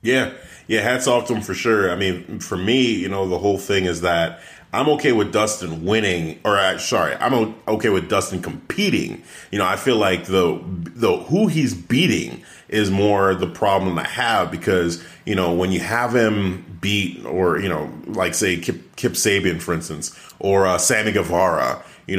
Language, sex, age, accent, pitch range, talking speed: English, male, 30-49, American, 90-115 Hz, 190 wpm